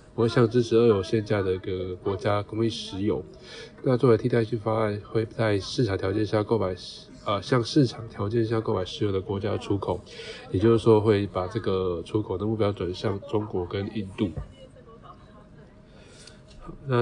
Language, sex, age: Chinese, male, 20-39